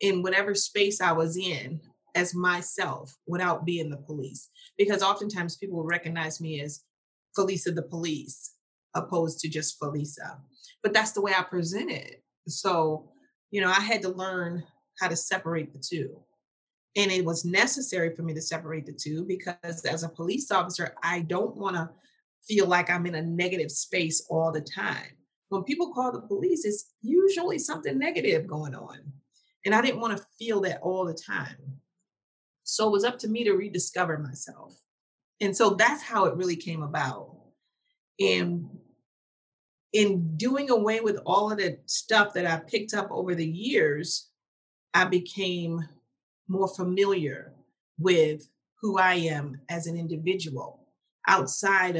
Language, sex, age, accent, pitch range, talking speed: English, female, 30-49, American, 160-205 Hz, 160 wpm